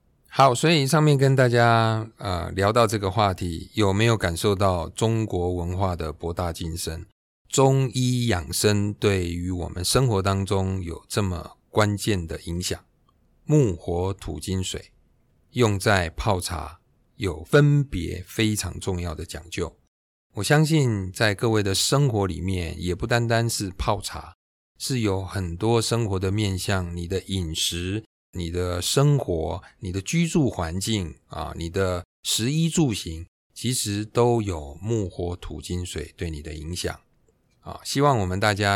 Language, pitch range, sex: Chinese, 85-115 Hz, male